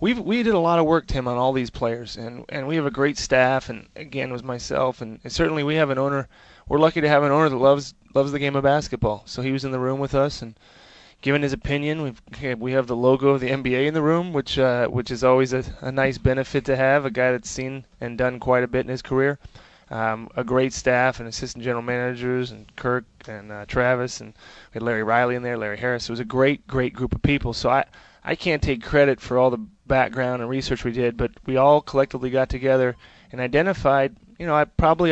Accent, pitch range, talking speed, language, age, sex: American, 120-135 Hz, 250 wpm, English, 20-39, male